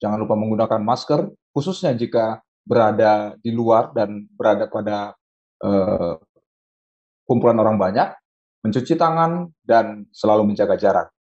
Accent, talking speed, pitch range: native, 115 wpm, 110-135 Hz